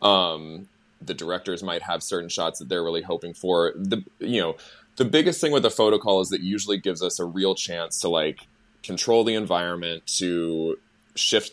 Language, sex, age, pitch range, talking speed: English, male, 20-39, 85-100 Hz, 195 wpm